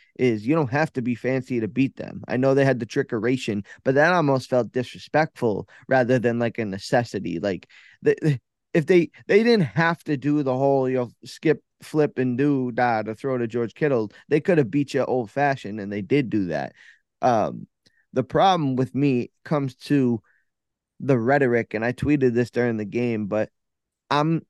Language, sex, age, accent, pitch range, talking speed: English, male, 20-39, American, 120-145 Hz, 200 wpm